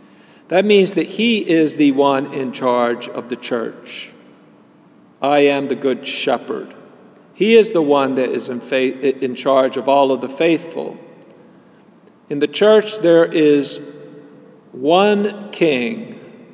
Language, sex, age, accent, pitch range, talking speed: English, male, 50-69, American, 135-180 Hz, 140 wpm